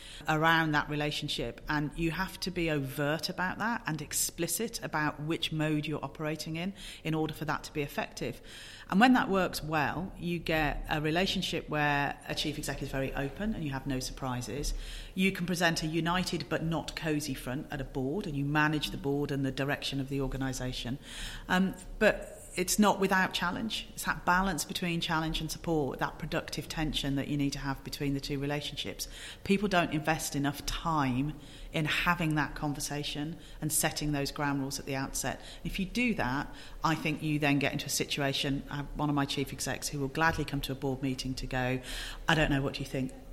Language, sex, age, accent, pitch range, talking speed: English, female, 40-59, British, 135-160 Hz, 205 wpm